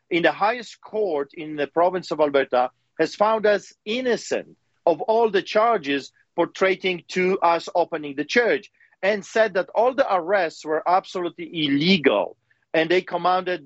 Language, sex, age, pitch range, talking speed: English, male, 40-59, 150-195 Hz, 155 wpm